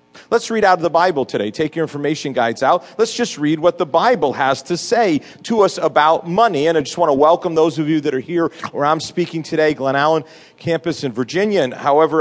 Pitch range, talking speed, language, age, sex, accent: 140-195 Hz, 235 wpm, English, 40-59, male, American